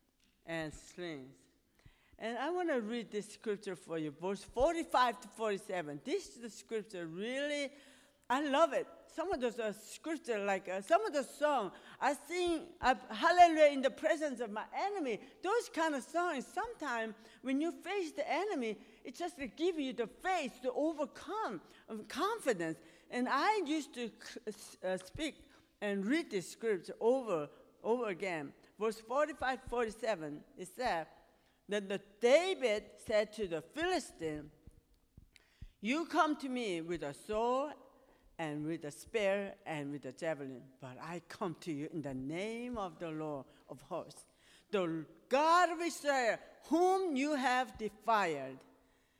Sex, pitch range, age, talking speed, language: female, 180-300 Hz, 60-79, 155 wpm, English